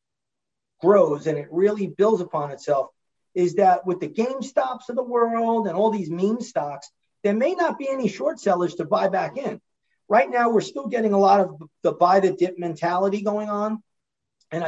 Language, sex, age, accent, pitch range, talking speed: English, male, 40-59, American, 175-230 Hz, 195 wpm